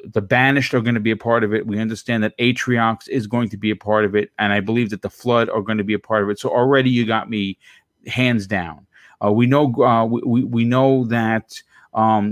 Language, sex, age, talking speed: English, male, 30-49, 255 wpm